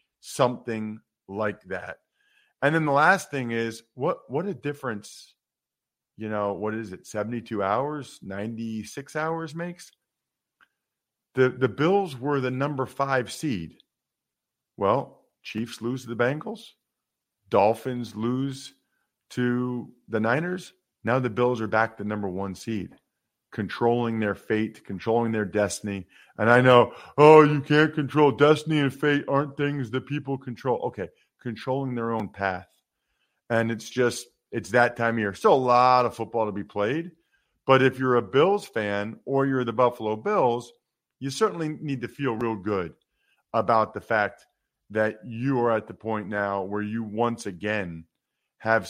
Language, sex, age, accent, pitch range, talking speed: English, male, 50-69, American, 110-140 Hz, 155 wpm